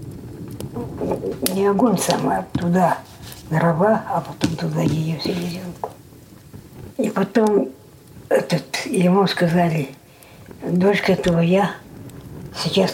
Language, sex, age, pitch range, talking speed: Russian, female, 60-79, 145-180 Hz, 90 wpm